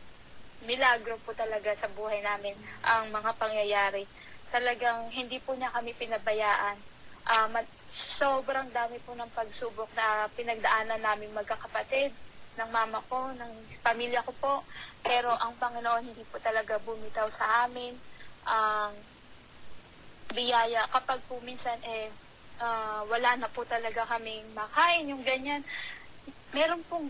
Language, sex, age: Filipino, female, 20-39